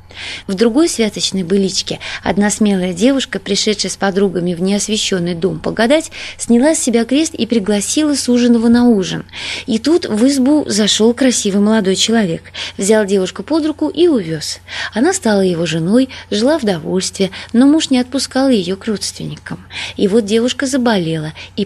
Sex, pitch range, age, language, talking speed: female, 195-260 Hz, 20-39, Russian, 160 wpm